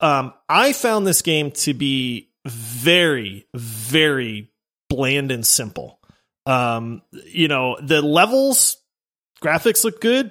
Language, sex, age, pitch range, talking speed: English, male, 30-49, 145-215 Hz, 115 wpm